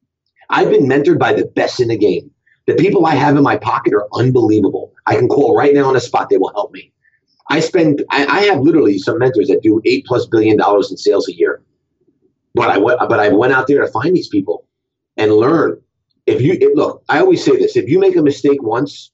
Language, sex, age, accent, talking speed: English, male, 30-49, American, 235 wpm